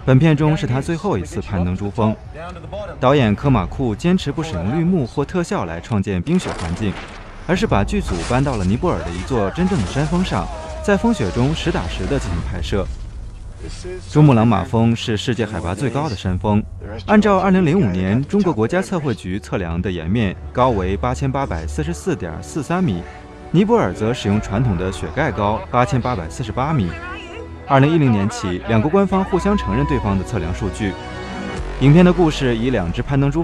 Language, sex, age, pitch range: Chinese, male, 20-39, 95-150 Hz